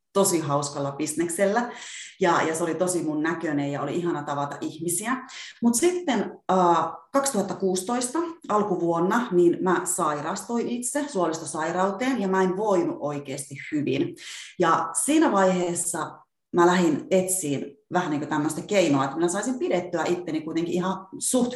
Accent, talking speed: native, 135 wpm